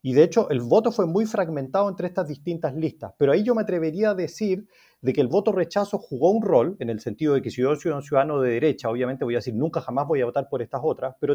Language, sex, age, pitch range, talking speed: Spanish, male, 40-59, 145-205 Hz, 275 wpm